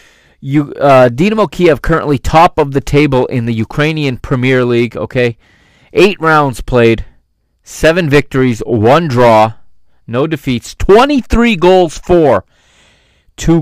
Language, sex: English, male